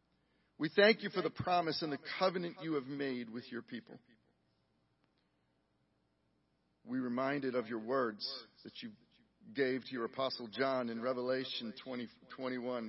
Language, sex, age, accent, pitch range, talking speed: English, male, 40-59, American, 110-150 Hz, 140 wpm